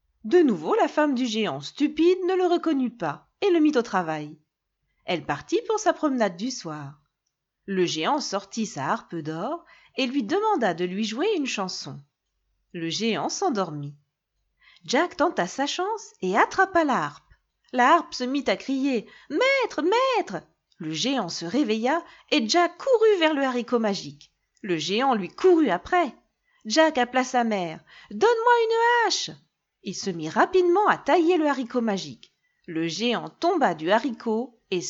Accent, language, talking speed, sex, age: French, French, 165 wpm, female, 40-59